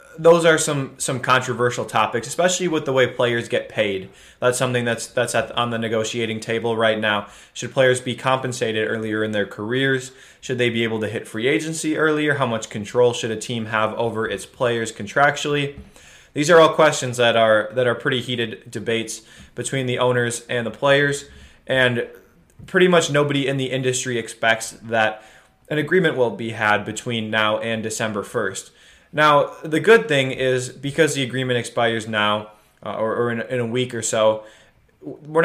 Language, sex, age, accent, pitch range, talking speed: English, male, 20-39, American, 115-140 Hz, 185 wpm